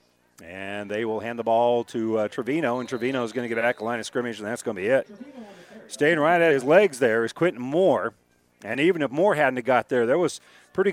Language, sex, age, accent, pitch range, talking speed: English, male, 40-59, American, 110-150 Hz, 240 wpm